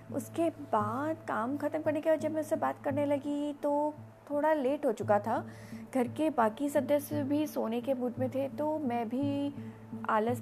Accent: native